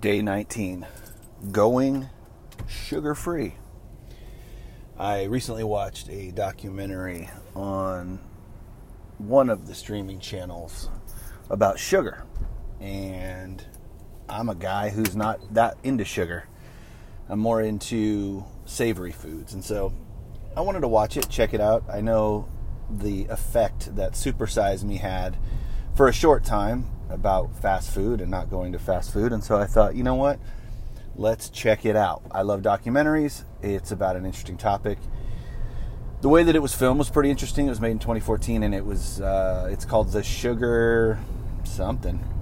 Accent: American